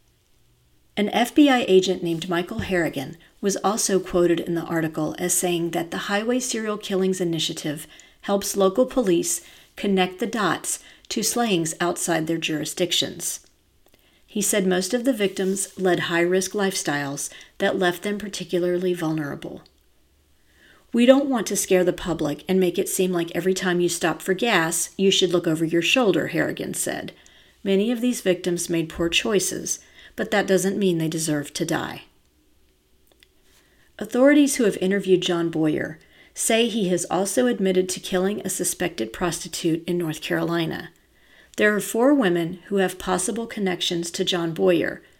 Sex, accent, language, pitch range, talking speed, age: female, American, English, 170-200 Hz, 155 wpm, 40-59